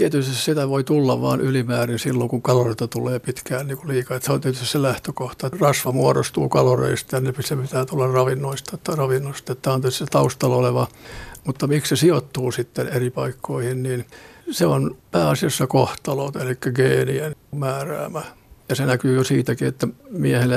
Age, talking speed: 60-79, 160 wpm